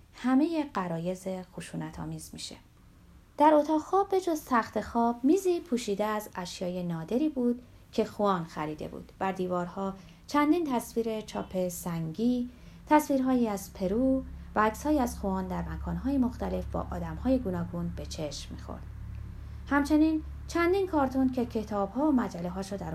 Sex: female